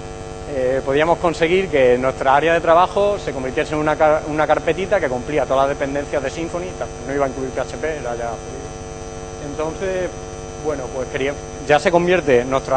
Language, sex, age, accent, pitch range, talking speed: Spanish, male, 30-49, Spanish, 110-150 Hz, 175 wpm